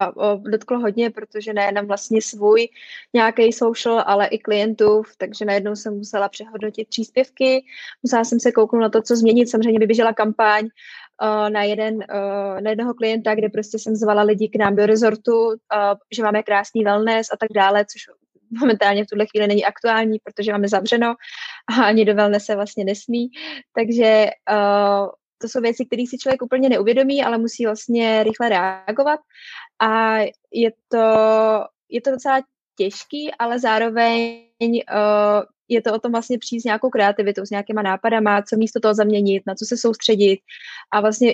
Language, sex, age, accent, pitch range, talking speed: Czech, female, 20-39, native, 210-230 Hz, 165 wpm